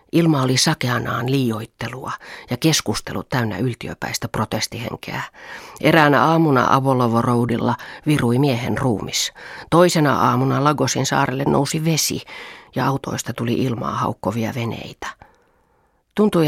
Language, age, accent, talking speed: Finnish, 40-59, native, 100 wpm